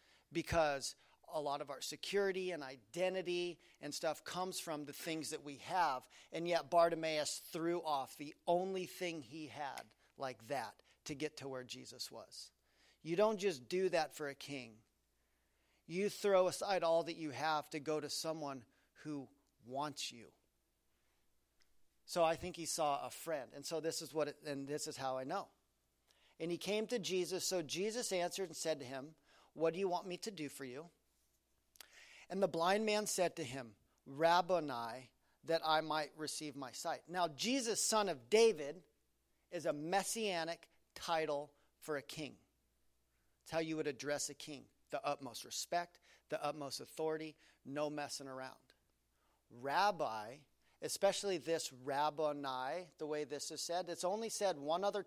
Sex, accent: male, American